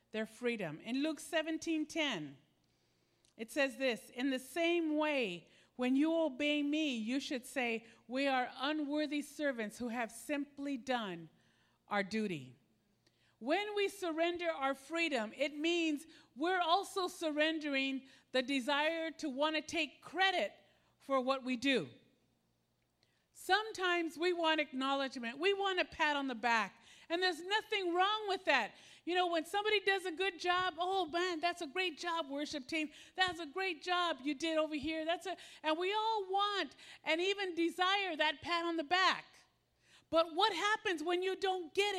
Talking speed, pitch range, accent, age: 160 wpm, 275-375 Hz, American, 50-69